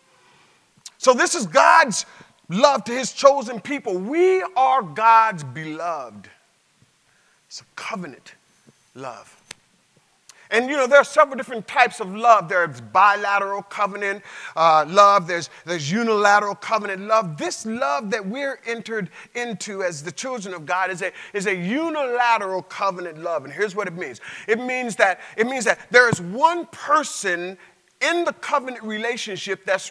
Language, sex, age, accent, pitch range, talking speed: English, male, 40-59, American, 185-240 Hz, 145 wpm